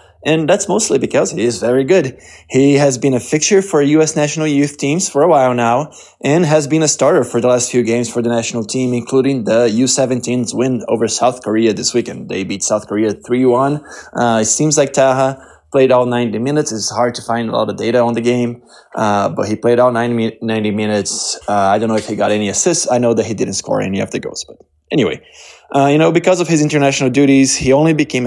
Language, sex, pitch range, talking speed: English, male, 110-135 Hz, 230 wpm